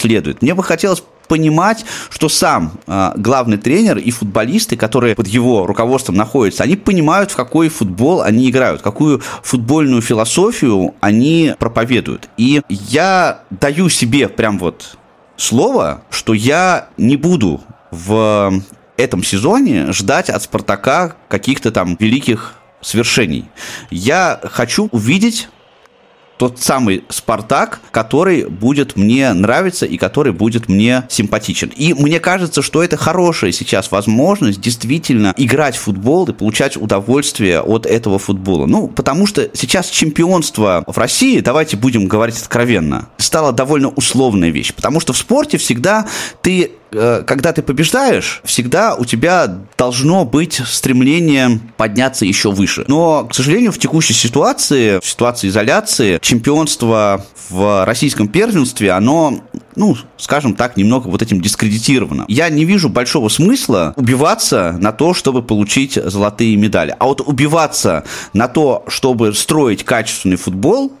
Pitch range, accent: 110-155 Hz, native